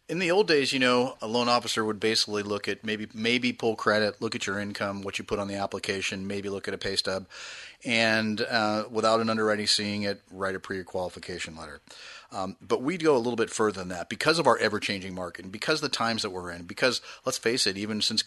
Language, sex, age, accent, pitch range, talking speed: English, male, 30-49, American, 95-110 Hz, 240 wpm